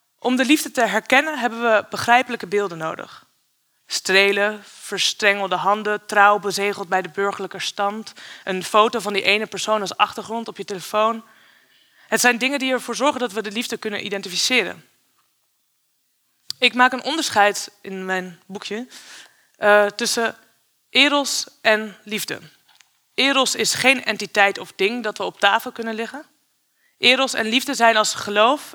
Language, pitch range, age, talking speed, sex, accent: Dutch, 200-245 Hz, 20-39, 150 wpm, female, Dutch